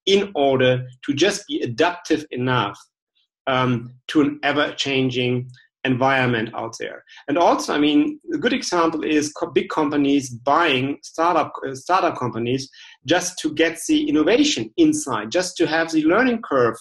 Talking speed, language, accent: 145 wpm, English, German